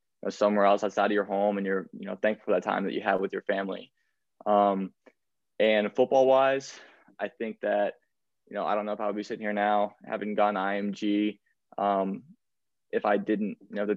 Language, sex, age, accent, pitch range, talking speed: English, male, 20-39, American, 105-110 Hz, 210 wpm